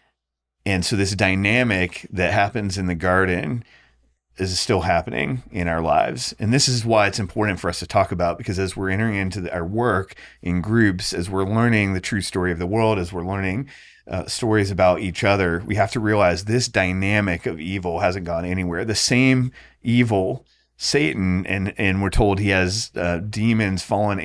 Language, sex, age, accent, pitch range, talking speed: English, male, 30-49, American, 90-105 Hz, 190 wpm